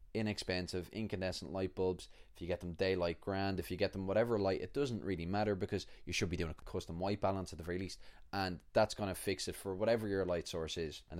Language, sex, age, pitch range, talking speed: English, male, 20-39, 90-105 Hz, 240 wpm